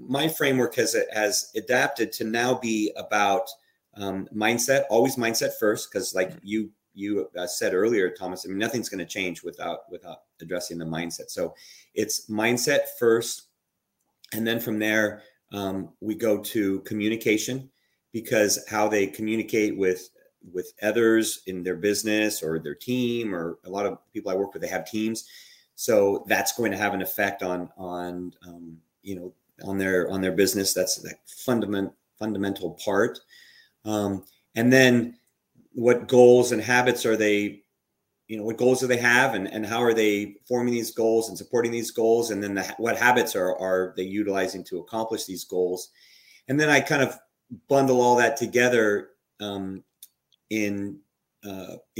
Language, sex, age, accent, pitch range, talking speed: English, male, 30-49, American, 95-115 Hz, 165 wpm